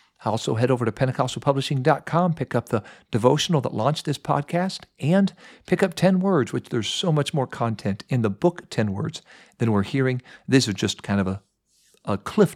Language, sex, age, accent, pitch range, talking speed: English, male, 50-69, American, 105-160 Hz, 190 wpm